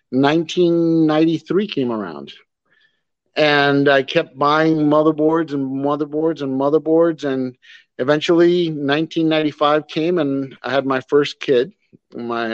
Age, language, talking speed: 50-69, English, 110 wpm